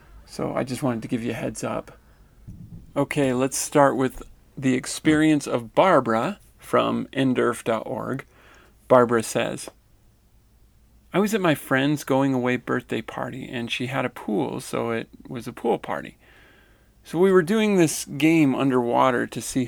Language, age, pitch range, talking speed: English, 40-59, 120-150 Hz, 155 wpm